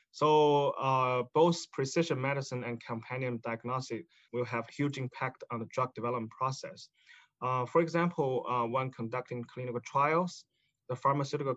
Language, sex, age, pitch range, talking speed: English, male, 20-39, 120-145 Hz, 140 wpm